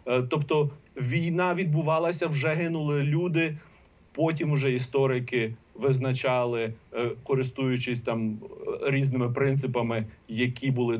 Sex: male